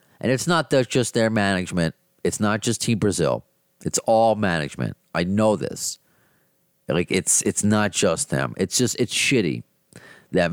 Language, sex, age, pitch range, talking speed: English, male, 30-49, 85-125 Hz, 170 wpm